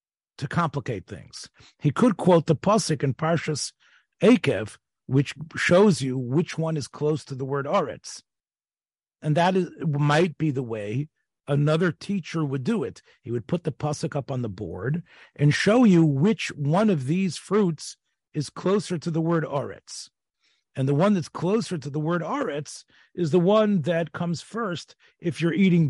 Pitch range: 130-180 Hz